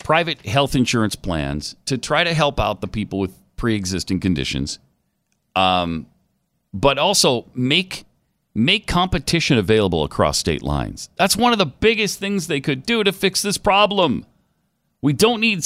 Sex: male